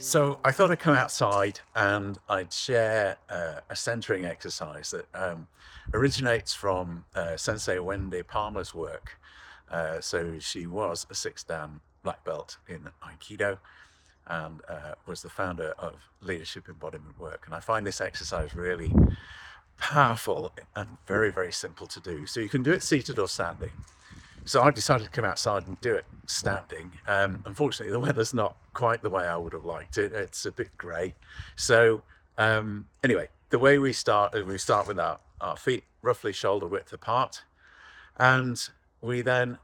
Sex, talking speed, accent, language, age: male, 165 wpm, British, English, 50-69